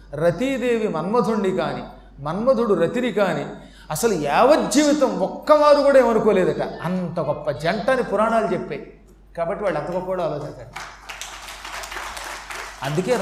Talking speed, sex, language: 95 wpm, male, Telugu